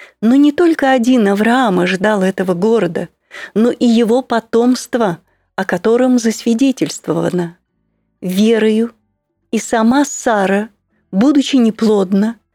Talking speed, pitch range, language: 100 wpm, 195-255 Hz, Russian